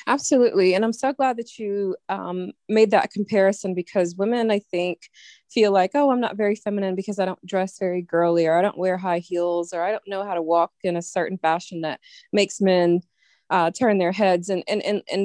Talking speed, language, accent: 220 wpm, English, American